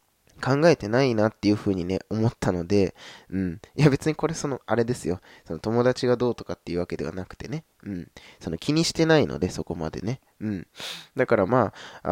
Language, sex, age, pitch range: Japanese, male, 20-39, 95-125 Hz